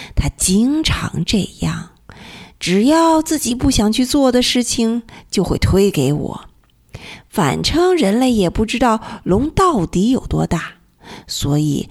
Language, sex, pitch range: Chinese, female, 175-270 Hz